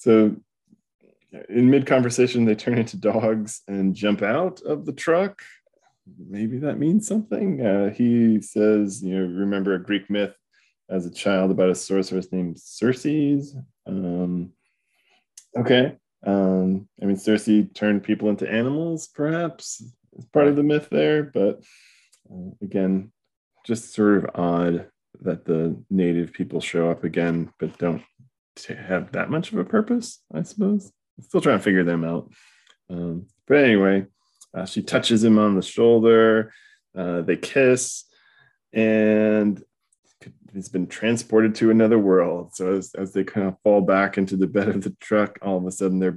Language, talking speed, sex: English, 160 wpm, male